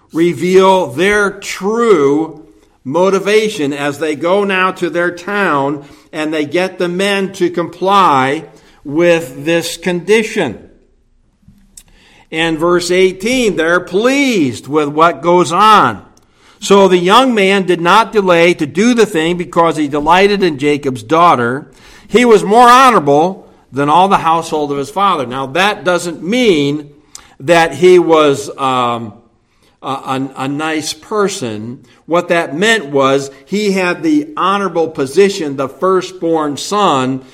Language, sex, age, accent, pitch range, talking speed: English, male, 60-79, American, 145-195 Hz, 135 wpm